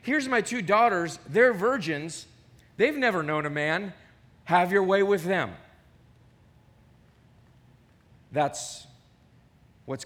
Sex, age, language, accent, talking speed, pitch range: male, 40-59, English, American, 105 wpm, 125-180 Hz